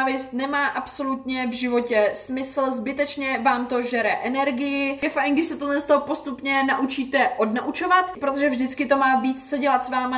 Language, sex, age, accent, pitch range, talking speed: Czech, female, 20-39, native, 235-275 Hz, 165 wpm